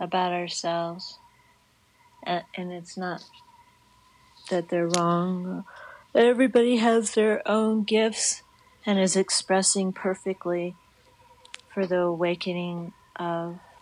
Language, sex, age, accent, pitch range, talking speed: English, female, 40-59, American, 160-215 Hz, 90 wpm